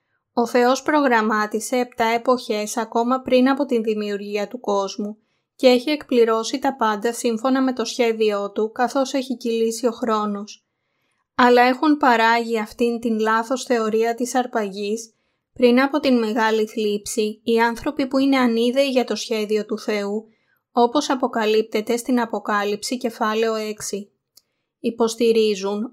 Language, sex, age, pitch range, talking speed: Greek, female, 20-39, 215-250 Hz, 135 wpm